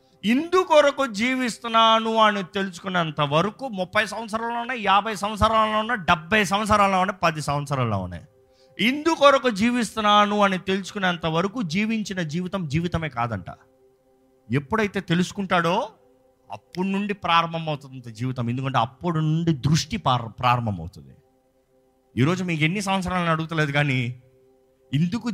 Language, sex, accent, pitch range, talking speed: Telugu, male, native, 130-210 Hz, 105 wpm